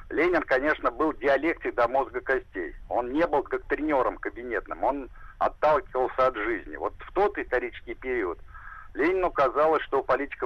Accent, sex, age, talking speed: native, male, 50-69, 155 wpm